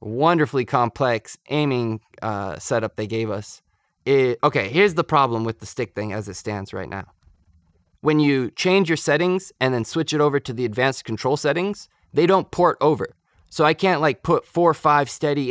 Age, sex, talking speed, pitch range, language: 20-39, male, 190 wpm, 115-155 Hz, English